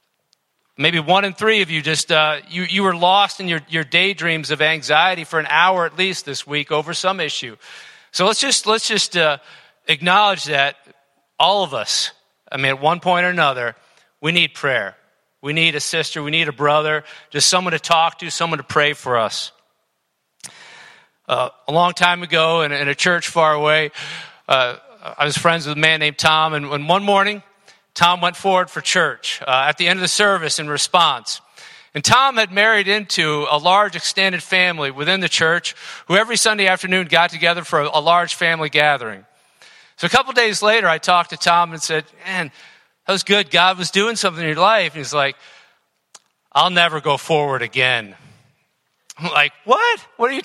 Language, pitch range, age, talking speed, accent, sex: English, 150-185 Hz, 40-59, 195 wpm, American, male